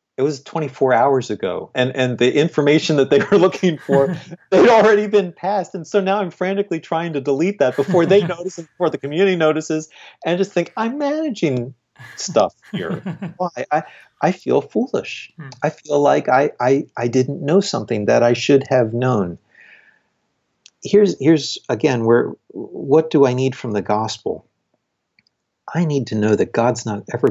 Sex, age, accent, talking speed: male, 40-59, American, 175 wpm